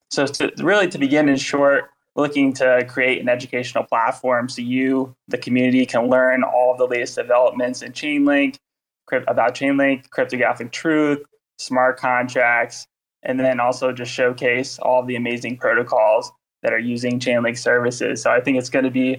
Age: 20-39